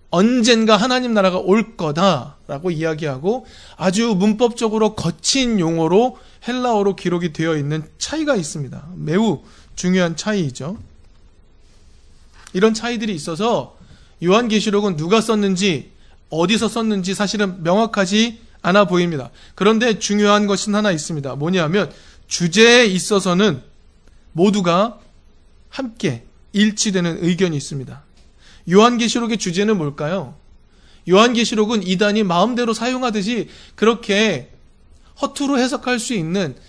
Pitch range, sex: 160-220 Hz, male